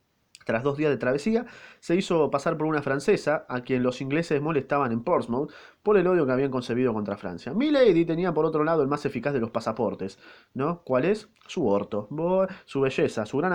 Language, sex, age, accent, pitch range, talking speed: Spanish, male, 20-39, Argentinian, 115-170 Hz, 205 wpm